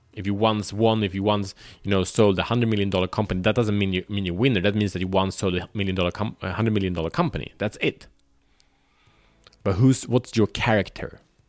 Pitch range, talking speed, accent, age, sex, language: 90-115 Hz, 230 wpm, Norwegian, 20-39, male, Swedish